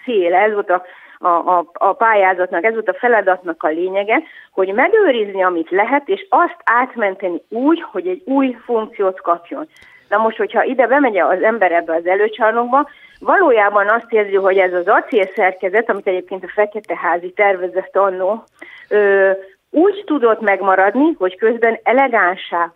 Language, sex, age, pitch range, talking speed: Hungarian, female, 30-49, 185-255 Hz, 150 wpm